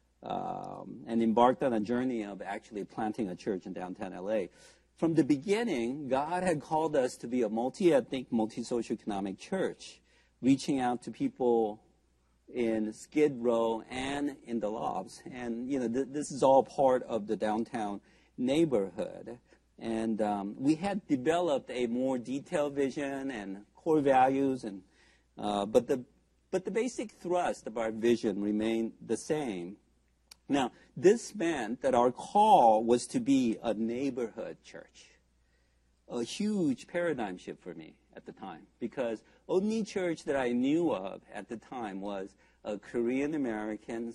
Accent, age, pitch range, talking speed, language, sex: American, 50-69, 105-140 Hz, 150 wpm, English, male